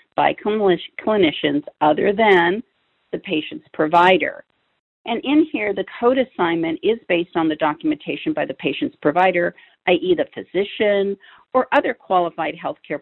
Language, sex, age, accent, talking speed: English, female, 50-69, American, 135 wpm